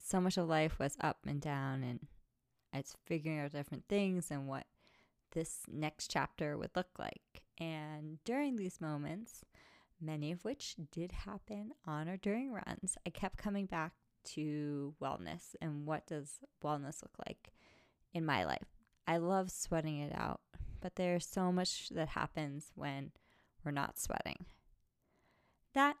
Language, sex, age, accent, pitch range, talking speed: English, female, 20-39, American, 150-200 Hz, 150 wpm